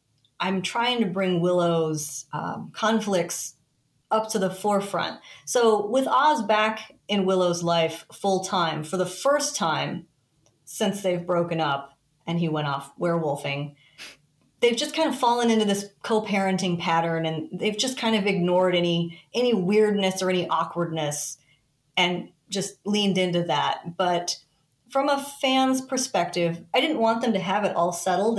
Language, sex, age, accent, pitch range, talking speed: English, female, 30-49, American, 165-220 Hz, 155 wpm